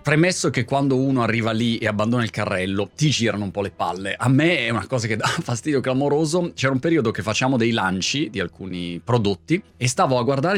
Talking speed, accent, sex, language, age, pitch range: 220 wpm, native, male, Italian, 30-49, 105-135 Hz